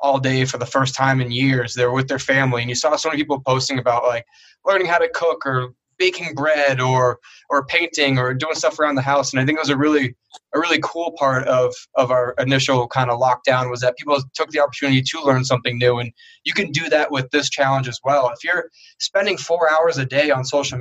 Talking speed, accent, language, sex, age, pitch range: 240 wpm, American, English, male, 20-39, 130-155 Hz